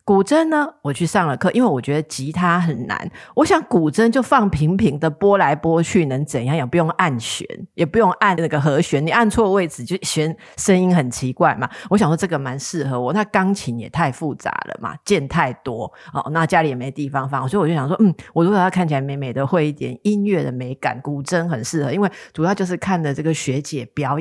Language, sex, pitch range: Chinese, female, 145-210 Hz